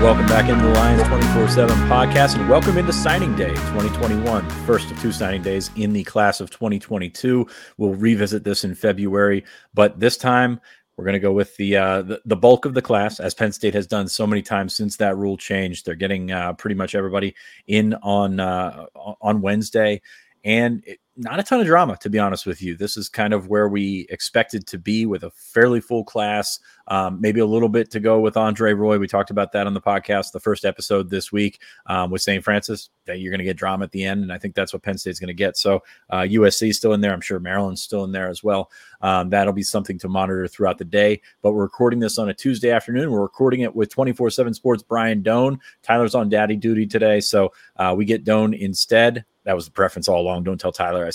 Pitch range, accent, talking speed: 95-110 Hz, American, 240 wpm